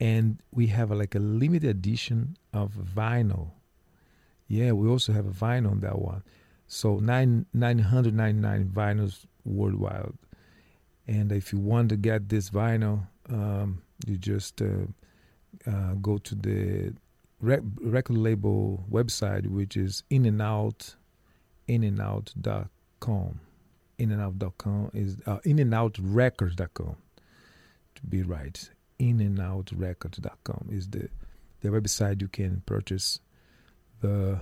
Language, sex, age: English, male, 50-69